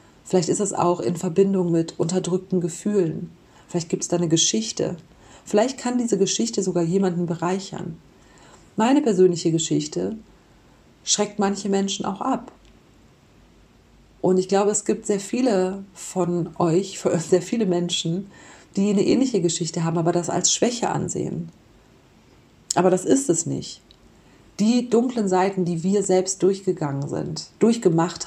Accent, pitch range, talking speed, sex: German, 170-195 Hz, 140 wpm, female